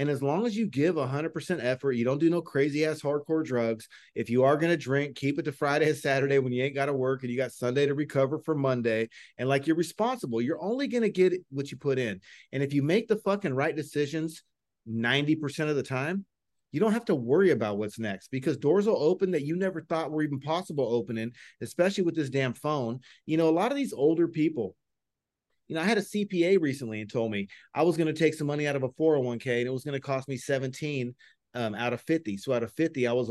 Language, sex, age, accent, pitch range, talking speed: English, male, 40-59, American, 130-165 Hz, 250 wpm